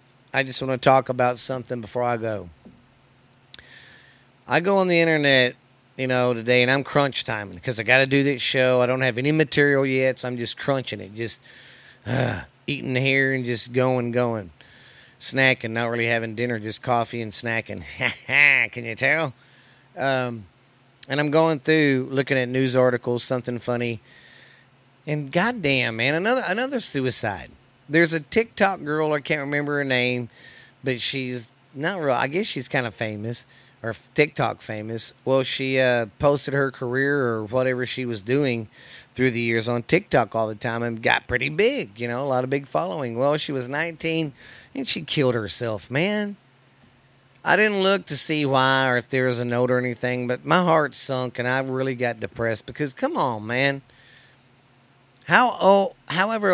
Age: 40-59